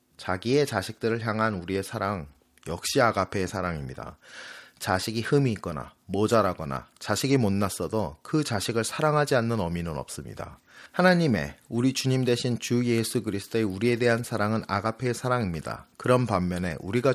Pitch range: 95-120 Hz